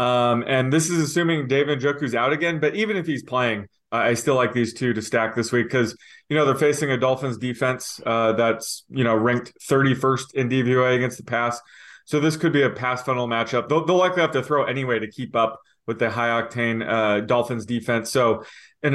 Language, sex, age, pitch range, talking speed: English, male, 20-39, 120-140 Hz, 220 wpm